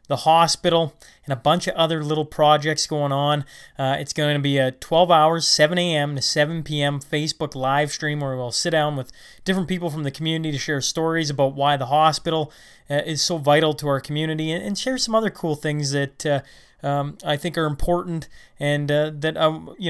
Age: 30-49